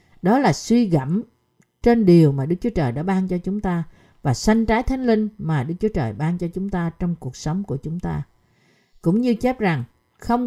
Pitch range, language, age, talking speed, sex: 155-220 Hz, Vietnamese, 50-69, 225 wpm, female